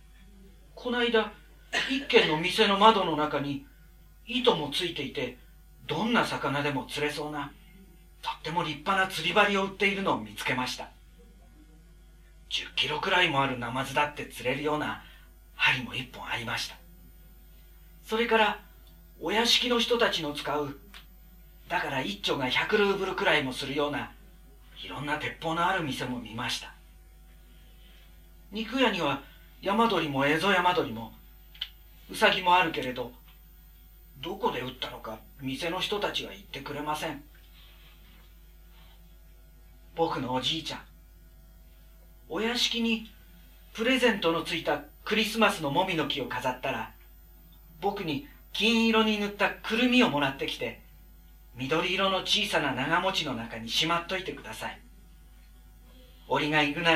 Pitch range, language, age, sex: 125-195 Hz, Japanese, 40-59, male